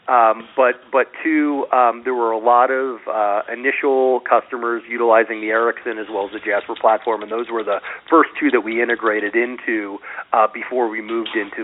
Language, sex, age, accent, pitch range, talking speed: English, male, 40-59, American, 110-130 Hz, 190 wpm